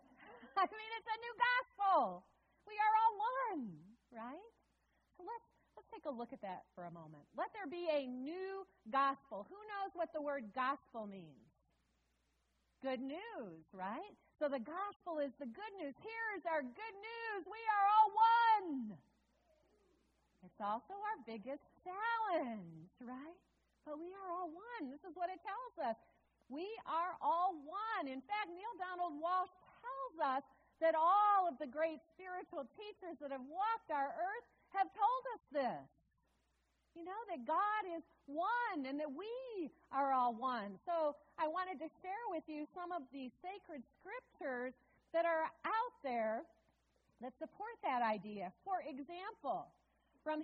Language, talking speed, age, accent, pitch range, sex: English, 160 wpm, 40-59, American, 265-390 Hz, female